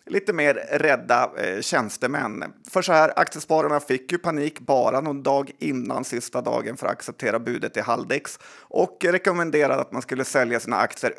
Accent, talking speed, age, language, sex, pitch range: native, 165 wpm, 30-49, Swedish, male, 130-165 Hz